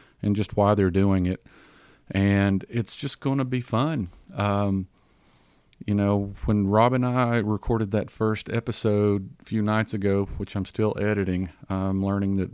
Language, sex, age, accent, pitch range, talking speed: English, male, 40-59, American, 95-115 Hz, 165 wpm